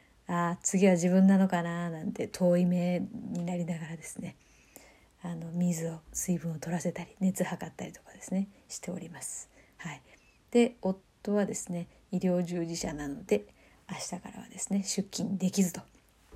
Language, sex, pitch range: Japanese, female, 175-205 Hz